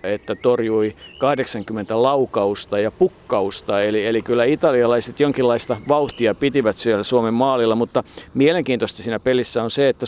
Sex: male